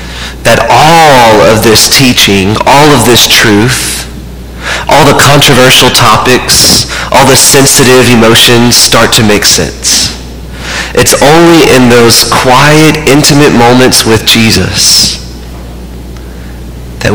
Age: 30-49